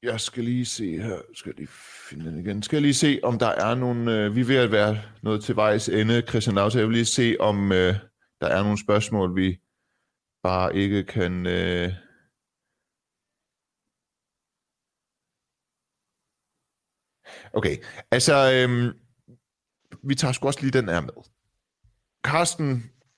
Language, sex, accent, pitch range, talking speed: Danish, male, native, 100-130 Hz, 145 wpm